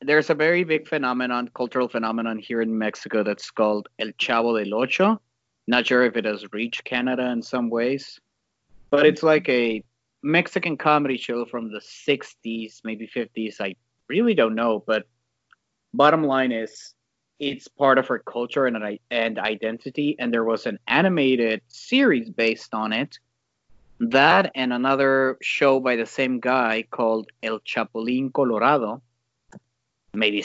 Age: 30-49